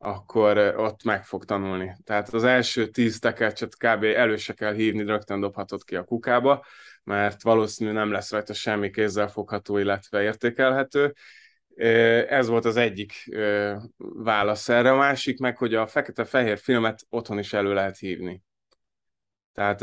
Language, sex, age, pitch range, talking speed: Hungarian, male, 20-39, 100-115 Hz, 150 wpm